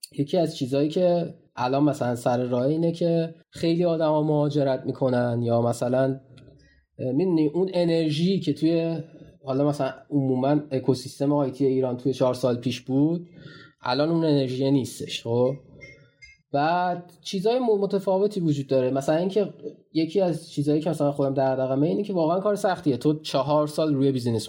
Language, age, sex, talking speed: Persian, 20-39, male, 150 wpm